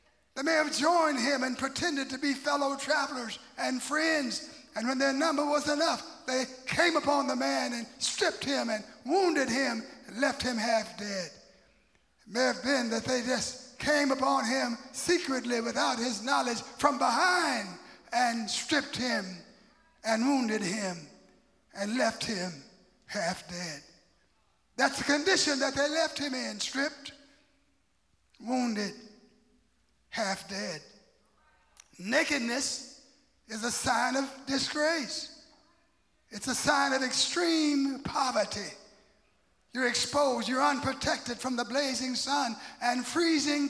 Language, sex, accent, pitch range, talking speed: English, male, American, 240-290 Hz, 130 wpm